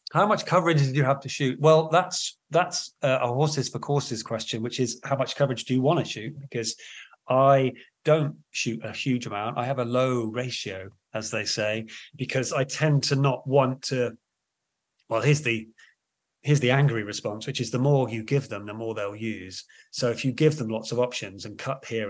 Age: 30-49